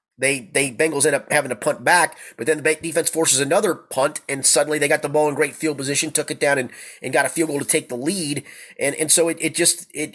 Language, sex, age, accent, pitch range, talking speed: English, male, 30-49, American, 120-150 Hz, 270 wpm